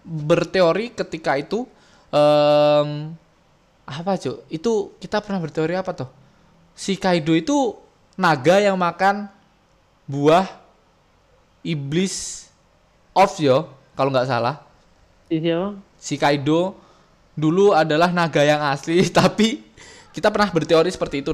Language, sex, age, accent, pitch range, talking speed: Indonesian, male, 20-39, native, 135-180 Hz, 105 wpm